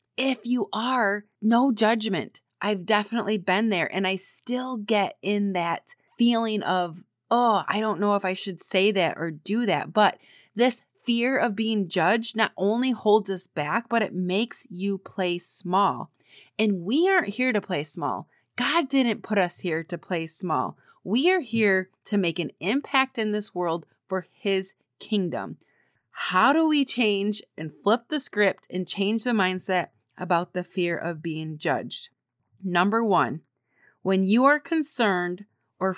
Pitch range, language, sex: 185-235 Hz, English, female